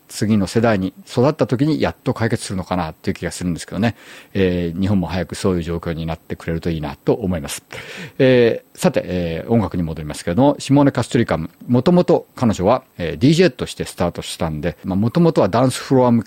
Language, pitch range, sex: Japanese, 85-120 Hz, male